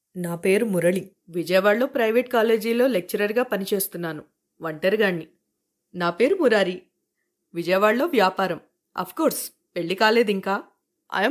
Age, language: 30-49, Telugu